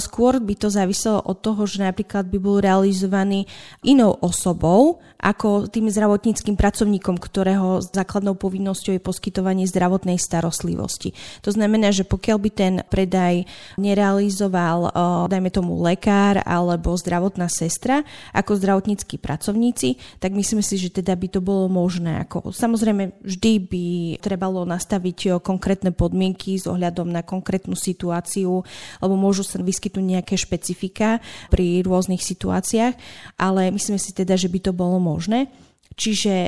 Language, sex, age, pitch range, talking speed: Slovak, female, 20-39, 180-205 Hz, 135 wpm